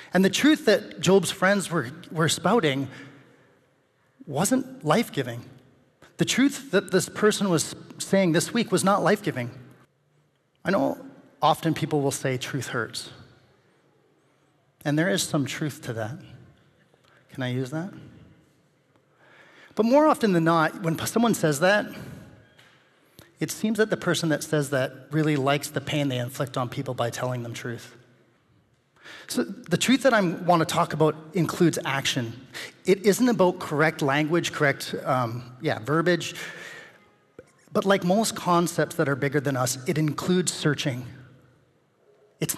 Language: English